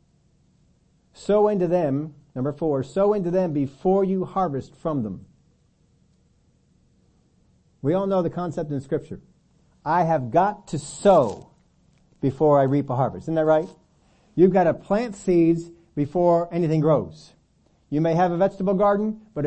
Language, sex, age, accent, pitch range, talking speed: English, male, 60-79, American, 135-180 Hz, 150 wpm